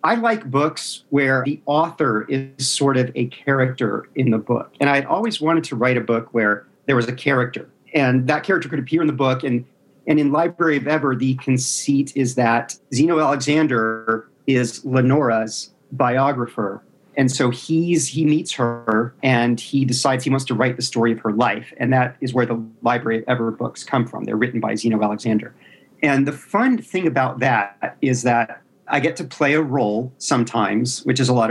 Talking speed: 195 wpm